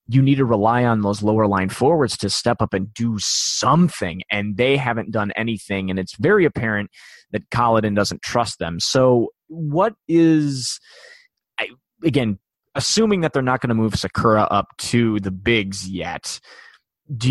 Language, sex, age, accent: English, male, 20-39, American